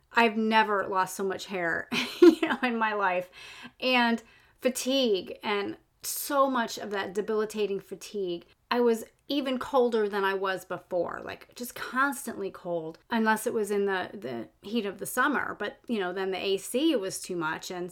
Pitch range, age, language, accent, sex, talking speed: 205-265 Hz, 30-49, English, American, female, 175 wpm